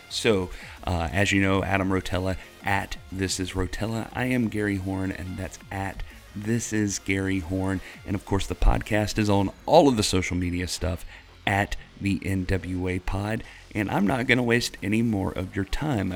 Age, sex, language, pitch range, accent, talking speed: 30-49, male, English, 90-105 Hz, American, 185 wpm